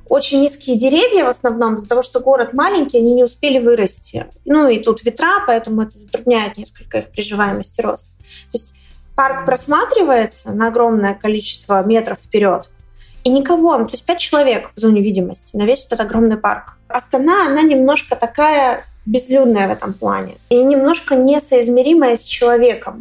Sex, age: female, 20-39